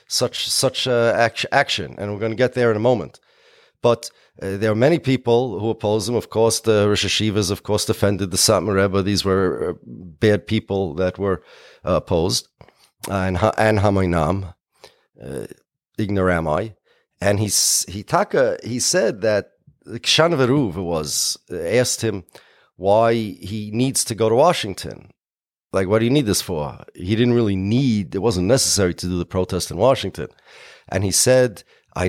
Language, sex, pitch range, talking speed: English, male, 95-120 Hz, 175 wpm